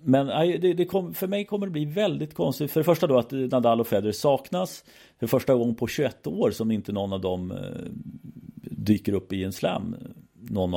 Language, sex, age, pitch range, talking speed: Swedish, male, 40-59, 100-150 Hz, 205 wpm